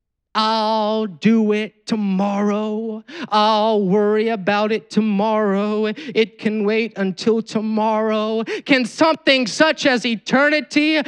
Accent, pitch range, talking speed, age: American, 210-265 Hz, 105 wpm, 30-49